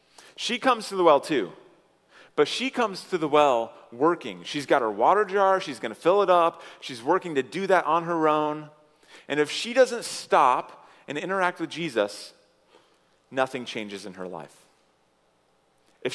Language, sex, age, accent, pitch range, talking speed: English, male, 30-49, American, 100-160 Hz, 175 wpm